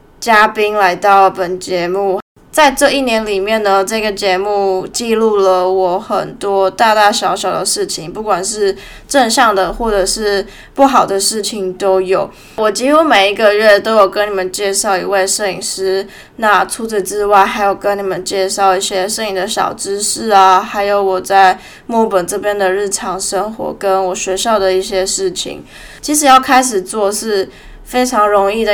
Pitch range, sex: 190-220 Hz, female